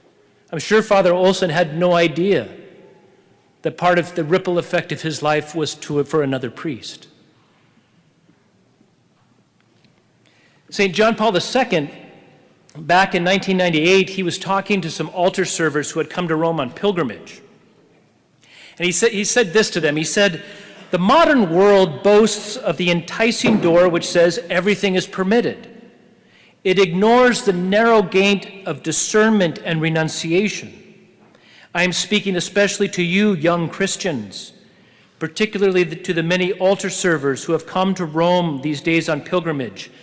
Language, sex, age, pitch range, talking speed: English, male, 40-59, 170-205 Hz, 140 wpm